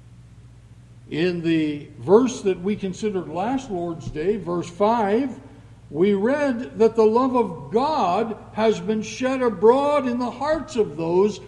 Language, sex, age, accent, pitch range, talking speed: English, male, 60-79, American, 150-240 Hz, 140 wpm